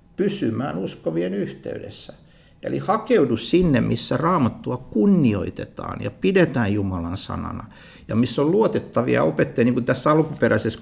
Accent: native